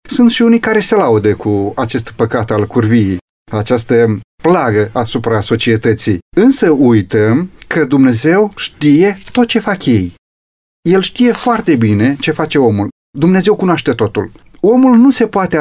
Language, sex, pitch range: Romanian, male, 115-165 Hz